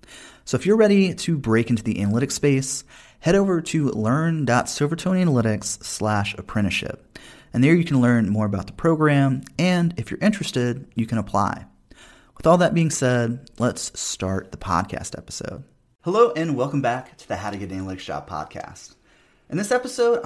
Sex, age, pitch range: male, 30-49, 95-145 Hz